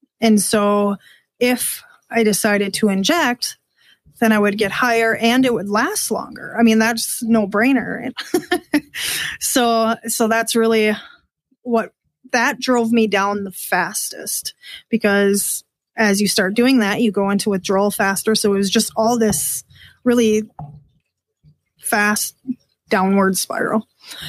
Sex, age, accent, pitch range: female, 20-39, American, 205-235 Hz